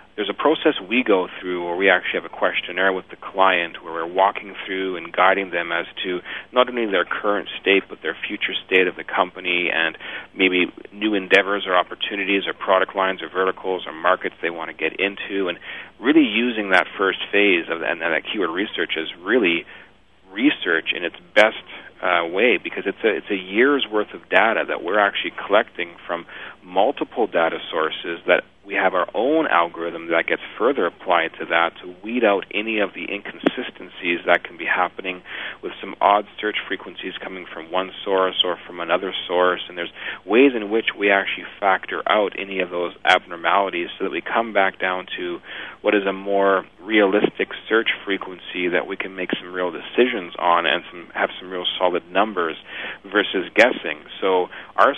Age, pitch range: 40-59, 90-105 Hz